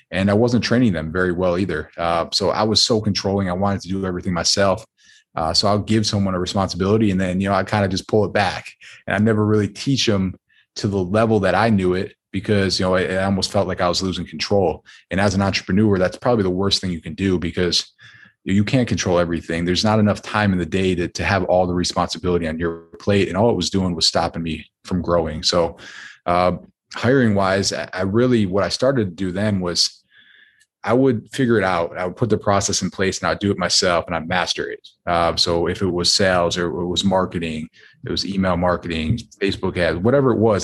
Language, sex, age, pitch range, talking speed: English, male, 20-39, 90-105 Hz, 235 wpm